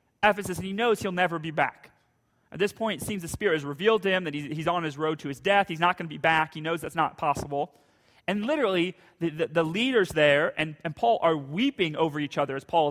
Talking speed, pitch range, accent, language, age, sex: 260 wpm, 160-215 Hz, American, English, 30-49, male